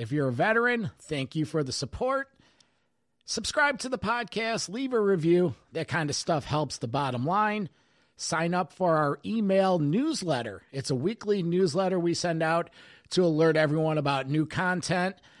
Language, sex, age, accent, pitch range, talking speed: English, male, 50-69, American, 145-200 Hz, 170 wpm